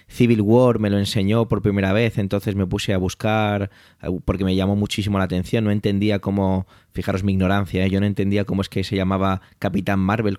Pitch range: 100-125 Hz